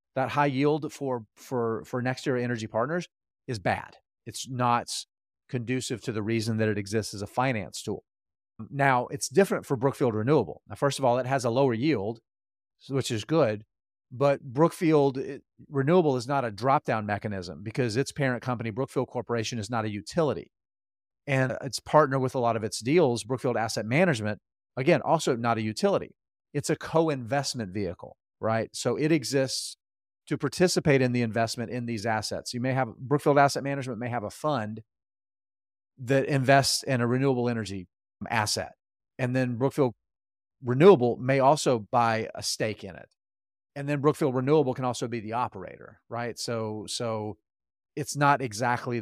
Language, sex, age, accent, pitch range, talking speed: English, male, 40-59, American, 110-140 Hz, 165 wpm